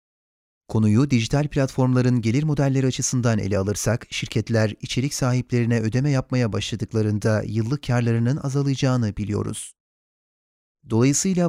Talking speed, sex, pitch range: 100 wpm, male, 110-135 Hz